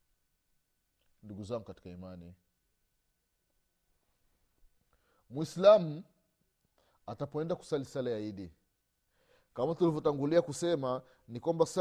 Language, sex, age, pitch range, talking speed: Swahili, male, 30-49, 110-160 Hz, 70 wpm